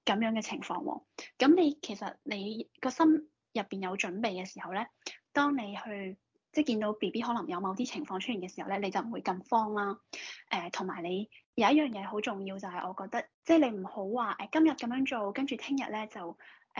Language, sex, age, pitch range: Chinese, female, 20-39, 195-270 Hz